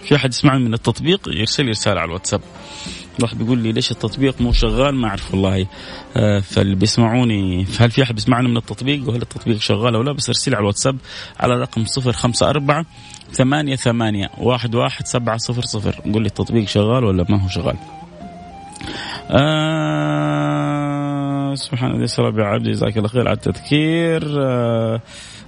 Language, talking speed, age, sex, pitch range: Arabic, 145 wpm, 30-49, male, 110-140 Hz